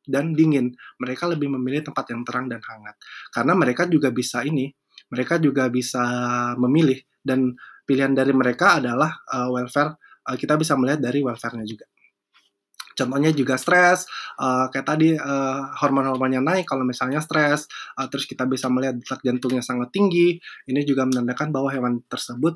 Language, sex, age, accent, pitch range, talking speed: Indonesian, male, 20-39, native, 125-145 Hz, 155 wpm